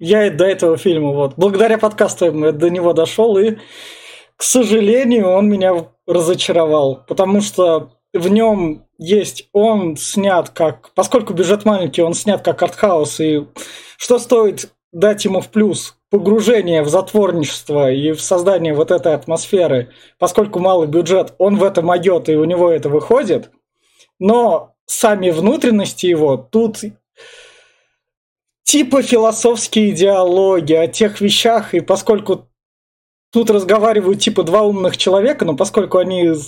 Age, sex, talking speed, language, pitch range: 20-39, male, 135 wpm, Russian, 165-215 Hz